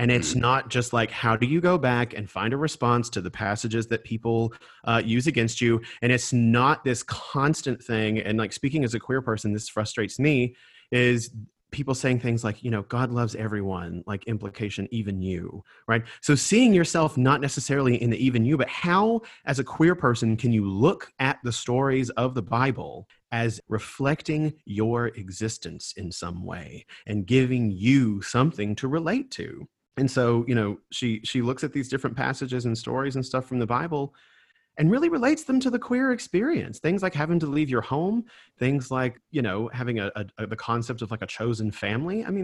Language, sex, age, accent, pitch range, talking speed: English, male, 30-49, American, 110-145 Hz, 200 wpm